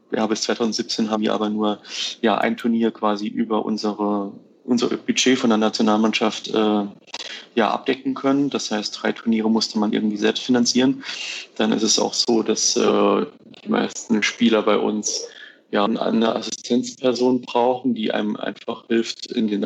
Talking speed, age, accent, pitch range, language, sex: 160 wpm, 30-49, German, 110-125 Hz, German, male